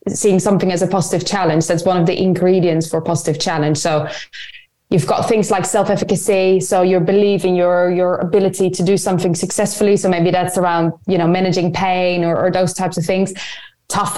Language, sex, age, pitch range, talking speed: English, female, 20-39, 180-200 Hz, 195 wpm